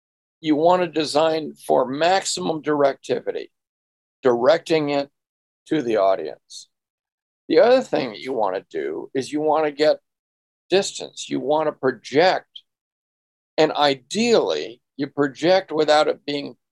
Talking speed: 135 wpm